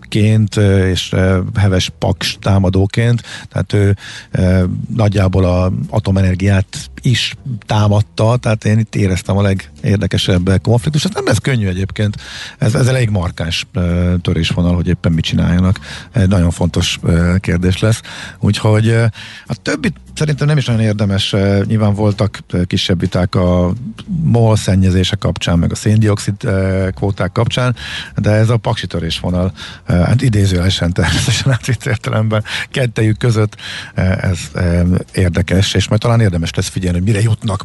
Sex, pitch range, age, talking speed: male, 90-110 Hz, 50-69, 130 wpm